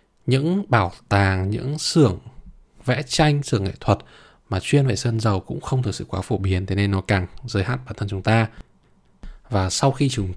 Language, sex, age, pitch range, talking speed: Vietnamese, male, 20-39, 105-130 Hz, 210 wpm